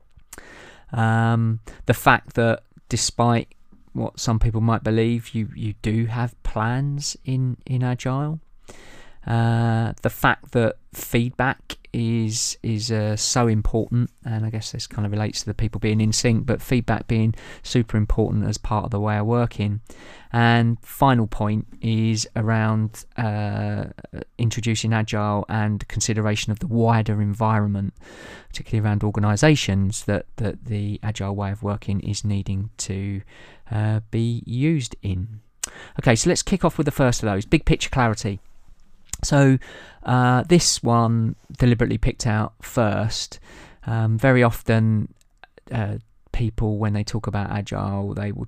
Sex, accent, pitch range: male, British, 105-120 Hz